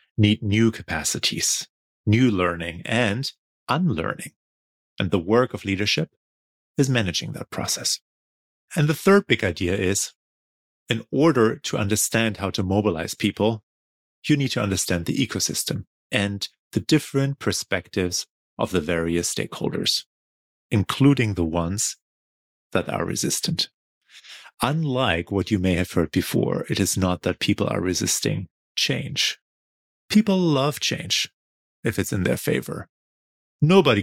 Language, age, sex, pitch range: English, 30-49, male, 85-115 Hz